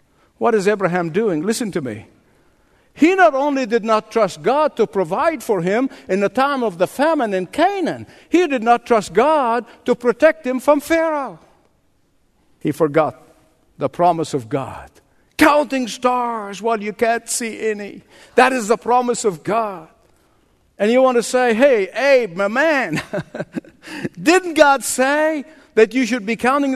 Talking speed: 160 wpm